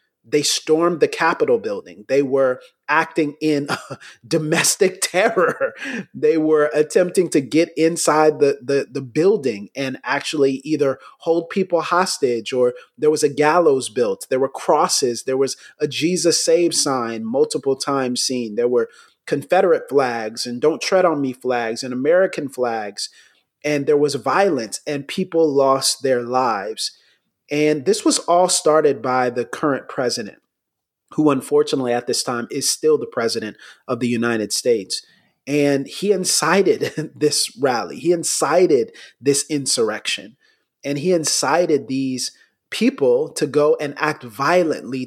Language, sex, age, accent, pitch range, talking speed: English, male, 30-49, American, 135-180 Hz, 140 wpm